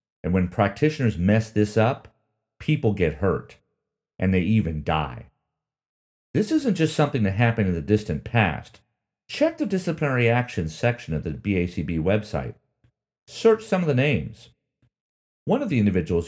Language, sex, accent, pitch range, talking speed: English, male, American, 90-135 Hz, 150 wpm